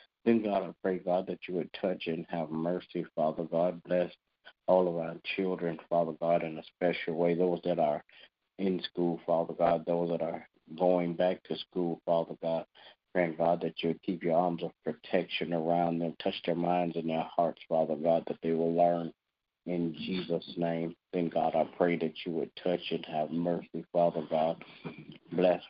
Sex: male